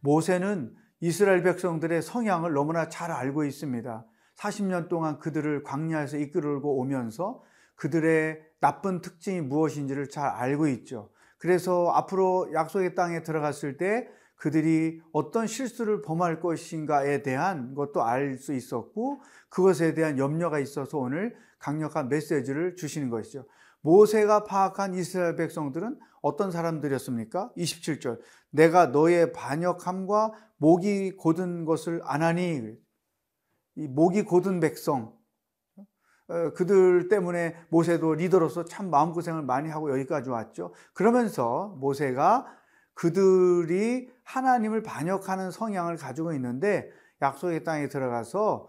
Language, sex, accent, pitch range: Korean, male, native, 145-185 Hz